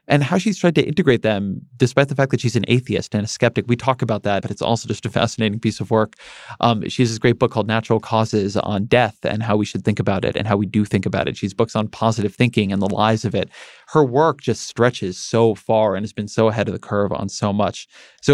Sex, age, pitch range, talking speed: male, 30-49, 105-125 Hz, 270 wpm